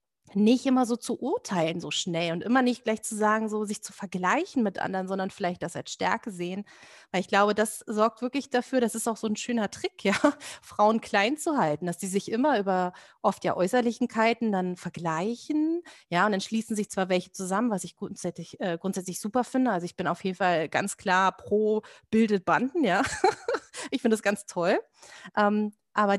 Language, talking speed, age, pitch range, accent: English, 200 wpm, 30-49, 180-225 Hz, German